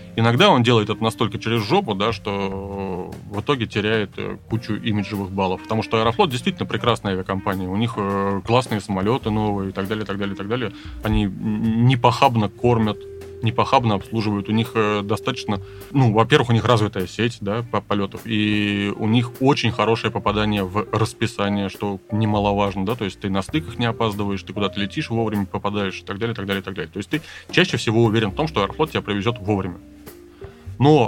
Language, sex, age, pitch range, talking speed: Russian, male, 20-39, 100-120 Hz, 185 wpm